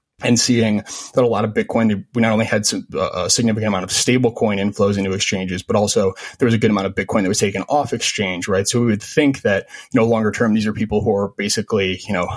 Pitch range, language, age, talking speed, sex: 100-115 Hz, English, 20-39, 260 wpm, male